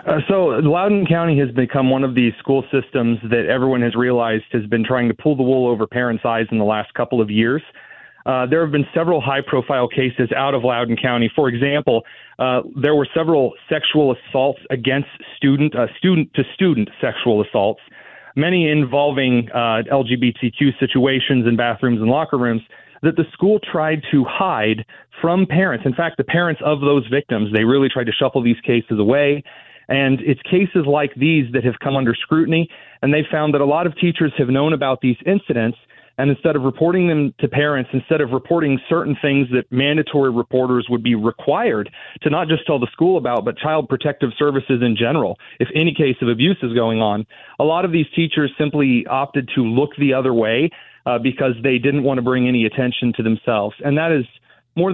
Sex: male